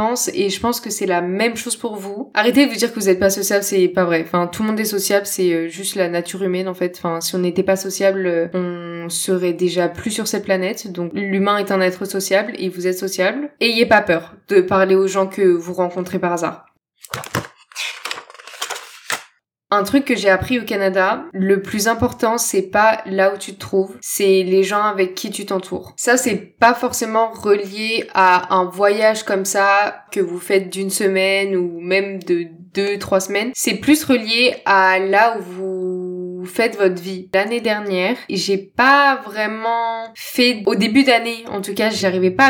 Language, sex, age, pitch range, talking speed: French, female, 20-39, 190-220 Hz, 200 wpm